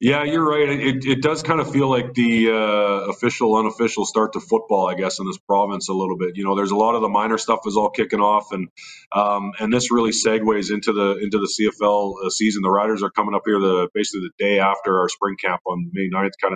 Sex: male